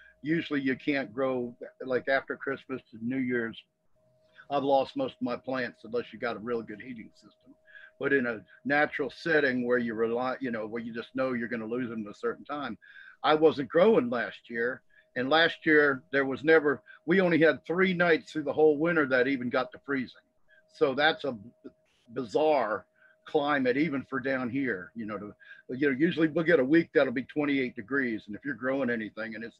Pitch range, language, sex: 130-170 Hz, English, male